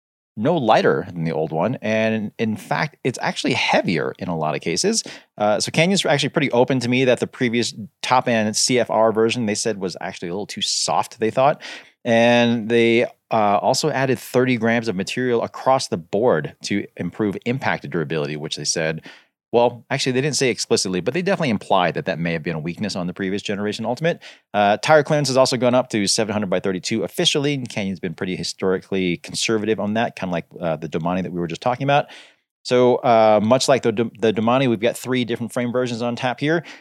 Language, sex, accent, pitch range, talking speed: English, male, American, 105-130 Hz, 210 wpm